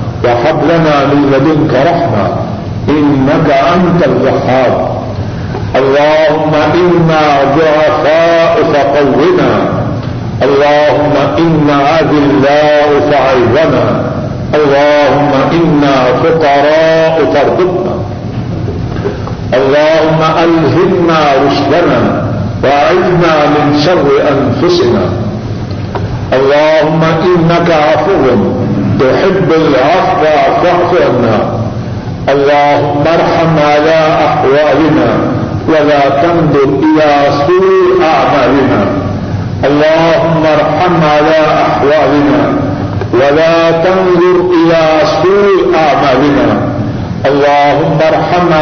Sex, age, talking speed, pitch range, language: male, 50-69, 50 wpm, 130-160 Hz, Urdu